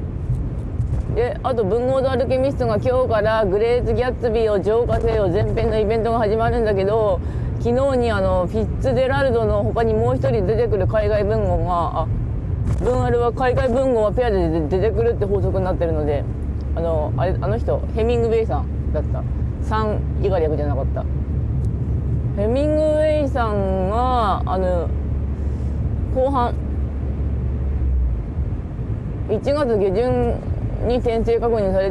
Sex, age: female, 20-39